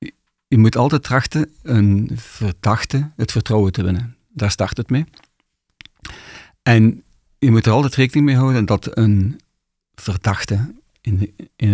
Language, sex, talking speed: Dutch, male, 140 wpm